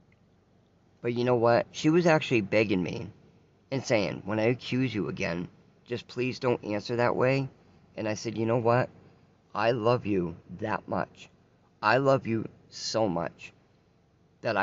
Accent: American